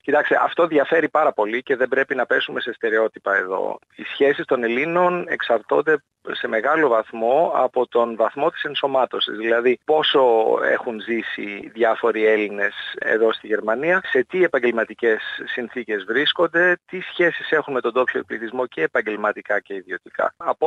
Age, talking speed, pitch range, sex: 40-59, 150 wpm, 115-170 Hz, male